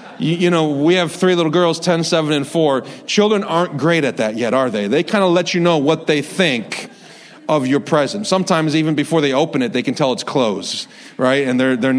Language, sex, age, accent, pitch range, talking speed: English, male, 40-59, American, 135-175 Hz, 230 wpm